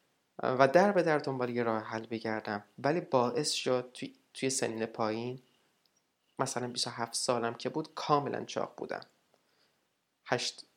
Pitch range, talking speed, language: 120-155 Hz, 140 wpm, Persian